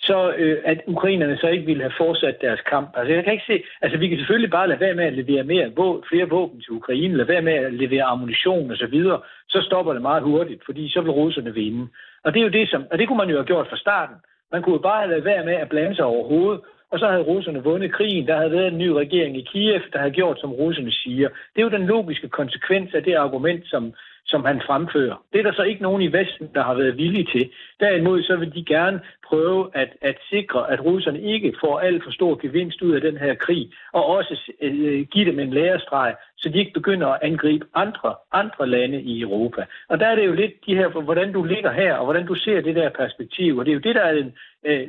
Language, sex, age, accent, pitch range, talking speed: Danish, male, 60-79, native, 145-185 Hz, 255 wpm